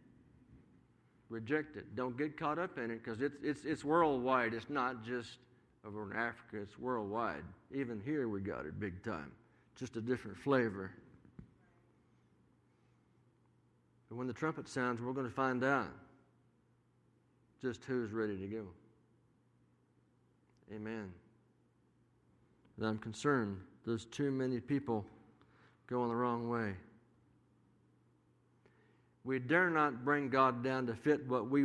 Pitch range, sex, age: 110-135 Hz, male, 50-69